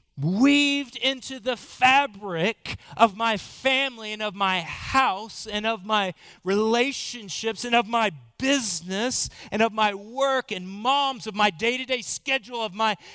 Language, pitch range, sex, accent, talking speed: English, 160-235 Hz, male, American, 140 wpm